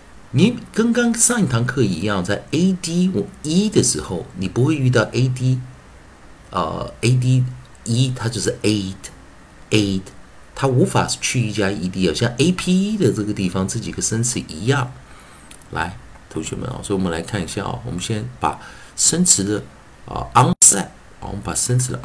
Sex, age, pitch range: male, 50-69, 100-140 Hz